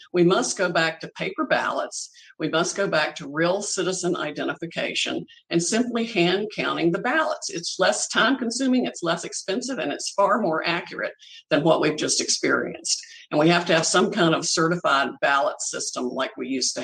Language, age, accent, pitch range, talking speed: English, 50-69, American, 135-195 Hz, 190 wpm